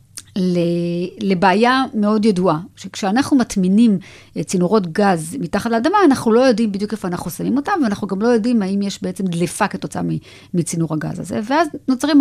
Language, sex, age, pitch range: Hebrew, female, 30-49, 175-240 Hz